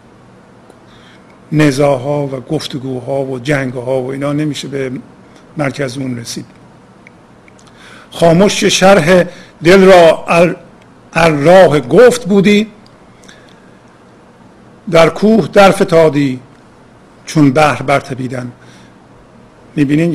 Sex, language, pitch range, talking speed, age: male, Persian, 130-160 Hz, 85 wpm, 50-69